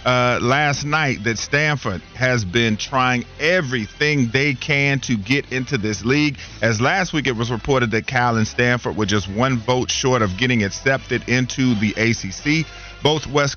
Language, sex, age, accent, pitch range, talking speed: English, male, 40-59, American, 110-135 Hz, 175 wpm